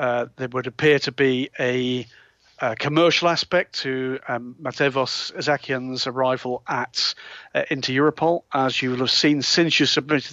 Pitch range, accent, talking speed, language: 125-155 Hz, British, 155 wpm, English